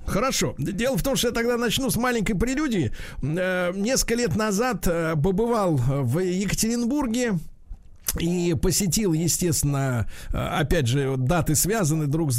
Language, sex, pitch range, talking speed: Russian, male, 145-215 Hz, 125 wpm